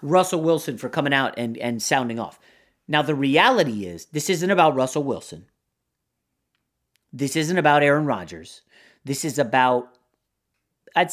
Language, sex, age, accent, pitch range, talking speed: English, male, 40-59, American, 130-180 Hz, 145 wpm